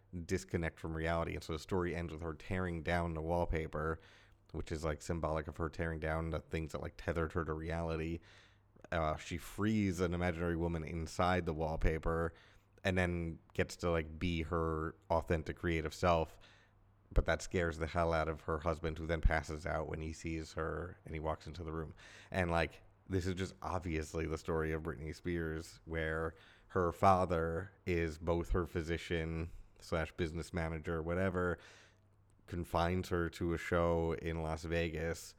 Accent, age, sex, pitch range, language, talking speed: American, 30-49, male, 80-95 Hz, English, 175 wpm